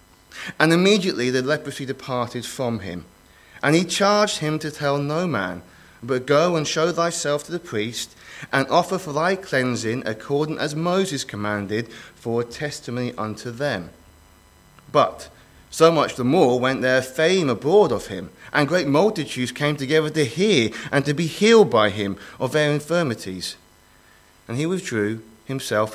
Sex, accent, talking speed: male, British, 155 wpm